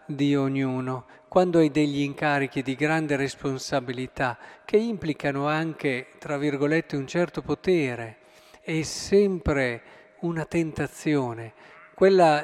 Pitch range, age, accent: 140-180 Hz, 50-69, native